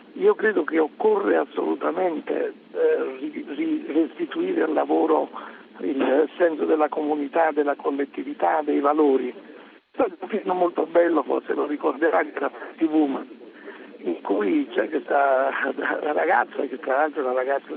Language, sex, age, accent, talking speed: Italian, male, 60-79, native, 150 wpm